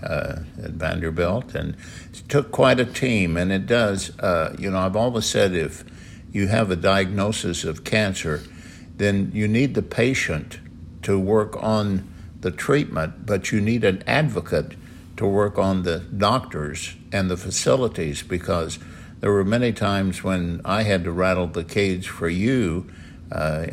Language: English